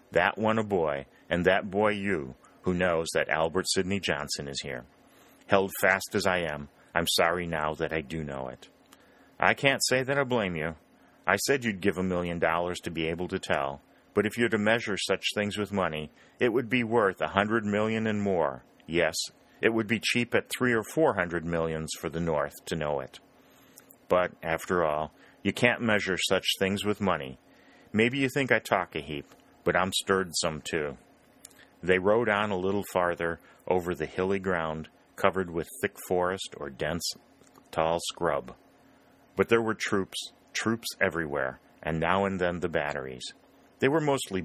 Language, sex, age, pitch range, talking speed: English, male, 40-59, 80-100 Hz, 190 wpm